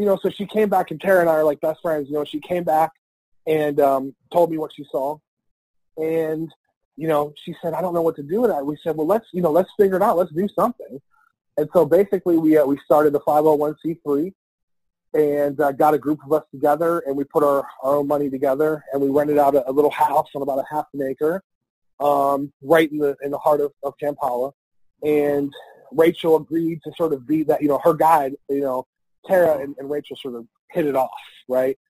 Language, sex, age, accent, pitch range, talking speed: English, male, 30-49, American, 135-160 Hz, 235 wpm